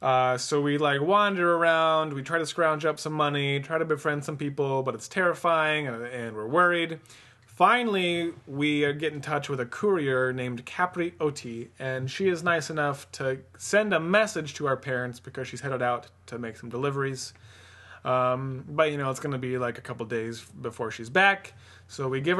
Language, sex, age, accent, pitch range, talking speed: English, male, 20-39, American, 120-160 Hz, 195 wpm